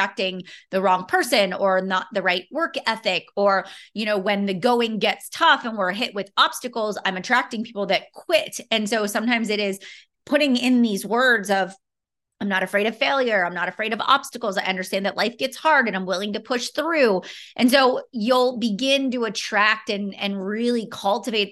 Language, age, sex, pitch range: English, 30-49, female, 190-240 Hz